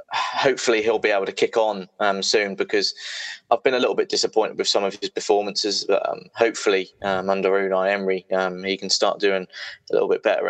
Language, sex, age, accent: English, male, 20-39, British